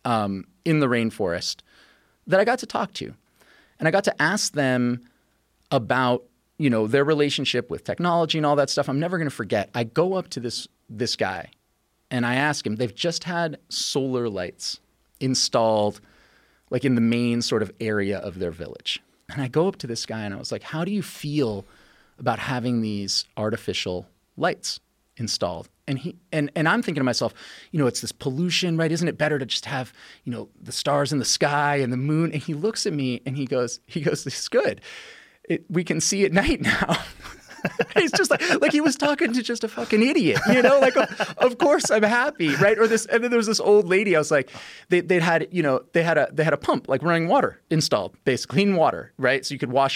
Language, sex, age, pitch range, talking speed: English, male, 30-49, 125-180 Hz, 225 wpm